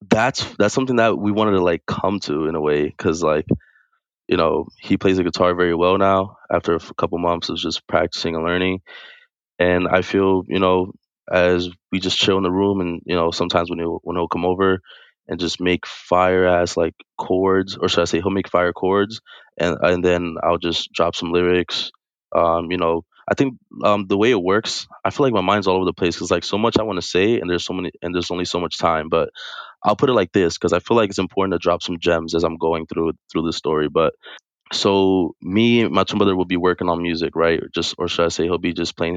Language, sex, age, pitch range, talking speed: English, male, 20-39, 85-95 Hz, 245 wpm